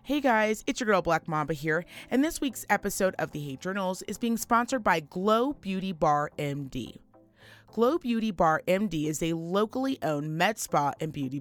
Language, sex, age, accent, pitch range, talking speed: English, female, 30-49, American, 160-230 Hz, 190 wpm